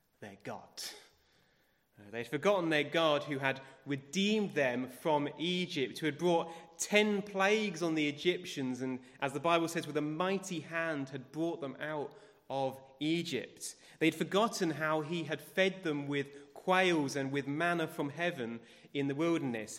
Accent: British